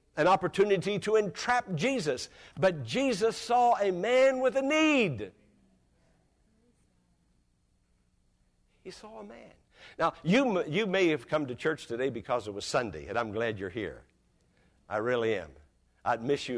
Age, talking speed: 60-79, 150 wpm